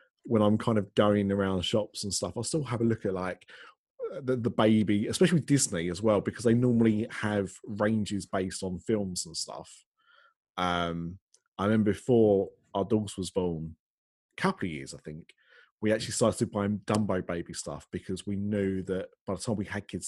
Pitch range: 90-110 Hz